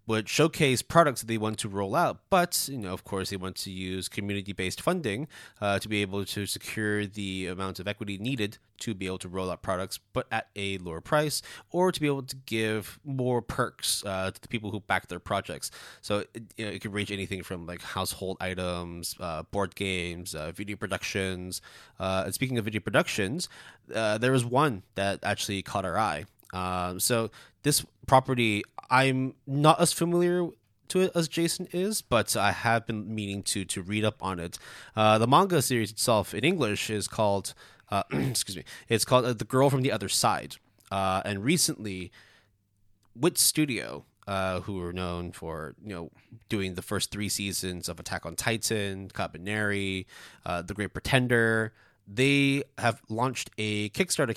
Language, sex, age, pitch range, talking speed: English, male, 20-39, 95-125 Hz, 185 wpm